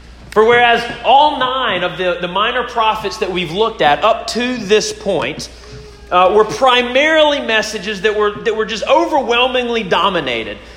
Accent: American